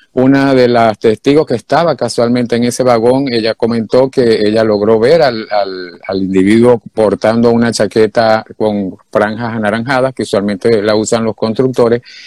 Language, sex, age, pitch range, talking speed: Spanish, male, 50-69, 110-140 Hz, 155 wpm